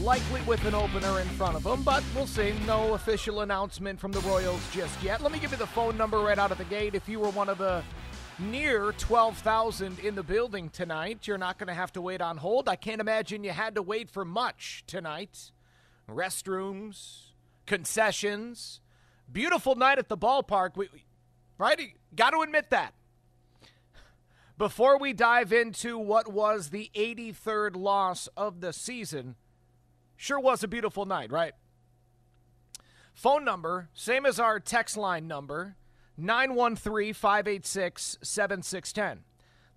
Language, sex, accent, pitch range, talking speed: English, male, American, 145-220 Hz, 150 wpm